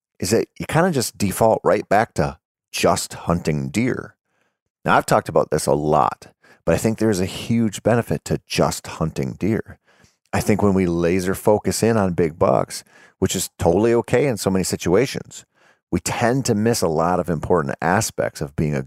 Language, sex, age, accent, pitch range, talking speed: English, male, 40-59, American, 85-105 Hz, 195 wpm